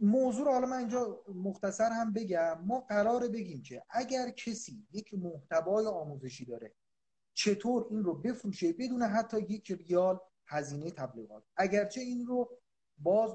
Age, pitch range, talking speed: 30-49, 160-225 Hz, 140 wpm